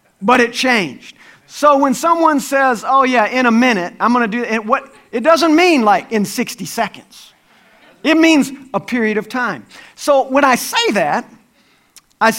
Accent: American